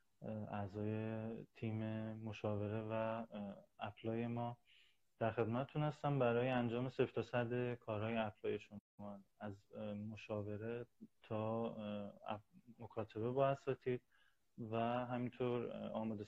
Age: 20-39